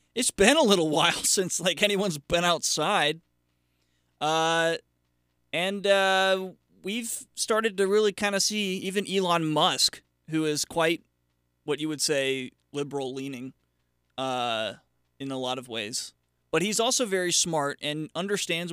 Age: 30-49